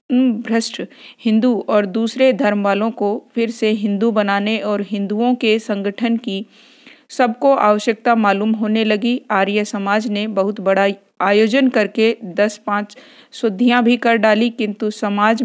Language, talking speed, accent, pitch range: Hindi, 140 wpm, native, 205-240 Hz